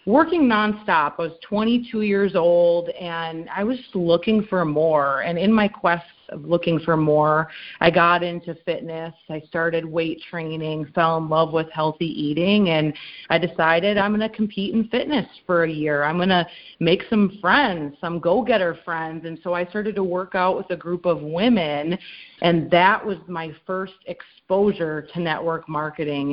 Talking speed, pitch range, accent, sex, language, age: 180 wpm, 165-200 Hz, American, female, English, 30-49